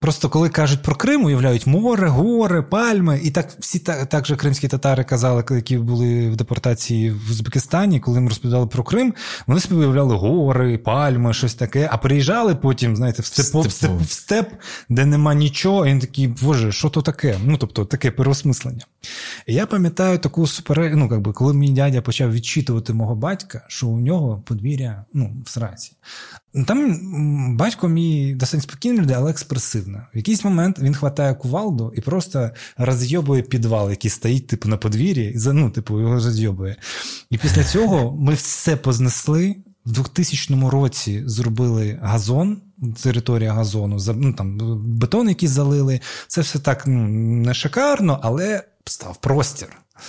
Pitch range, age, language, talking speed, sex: 120-155 Hz, 20-39, Ukrainian, 160 wpm, male